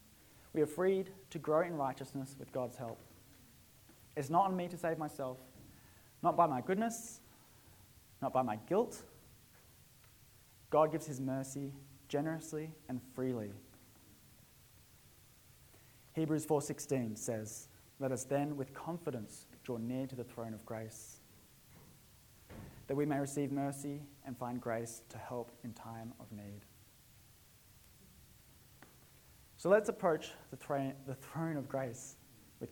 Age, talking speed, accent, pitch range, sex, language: 20-39, 125 wpm, Australian, 115-150 Hz, male, English